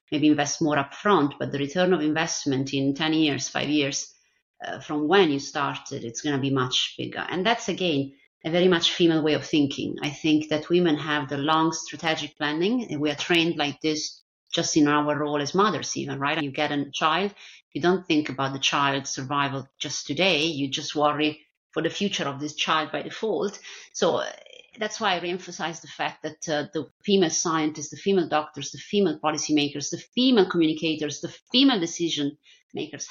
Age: 30-49